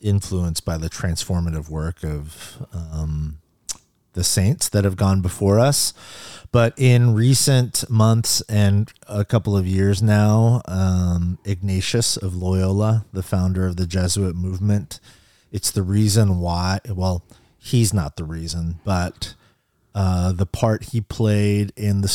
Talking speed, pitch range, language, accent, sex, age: 140 wpm, 95-110 Hz, English, American, male, 30-49